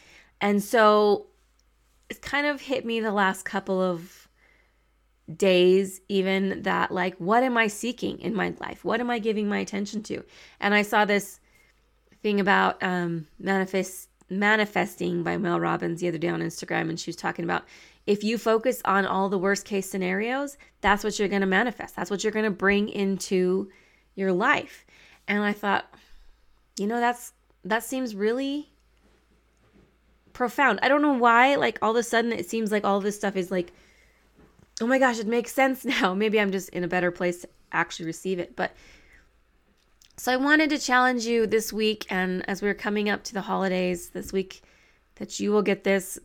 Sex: female